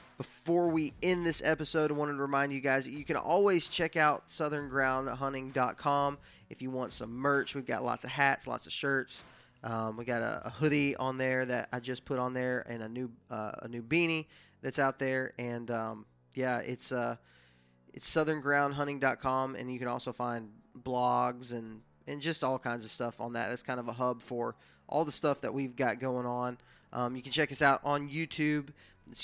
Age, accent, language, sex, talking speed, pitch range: 20-39, American, English, male, 205 wpm, 120-140 Hz